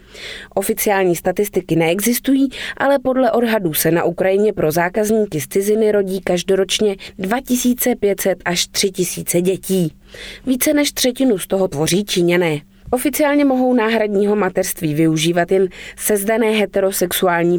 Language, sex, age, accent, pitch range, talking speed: Czech, female, 20-39, native, 175-225 Hz, 115 wpm